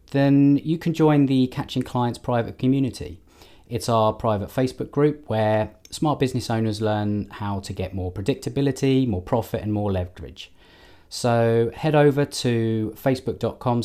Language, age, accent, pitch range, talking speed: English, 30-49, British, 100-130 Hz, 145 wpm